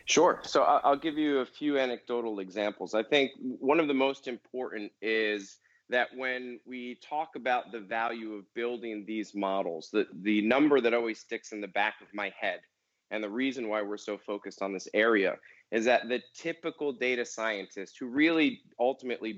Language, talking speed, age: English, 185 wpm, 30-49